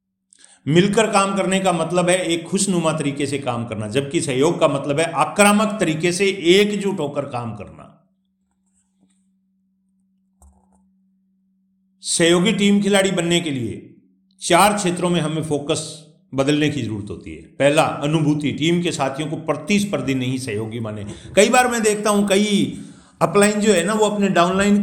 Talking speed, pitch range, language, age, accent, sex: 150 wpm, 145-190 Hz, Hindi, 50-69, native, male